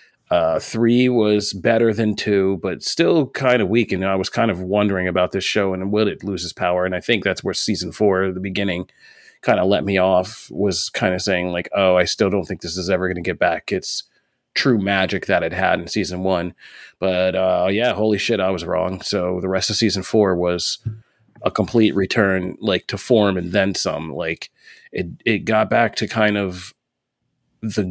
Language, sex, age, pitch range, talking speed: English, male, 30-49, 95-110 Hz, 215 wpm